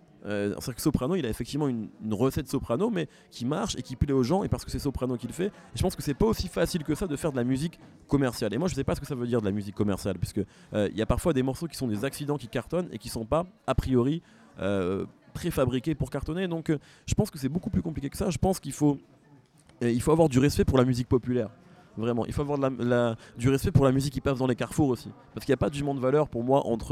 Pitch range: 120-155 Hz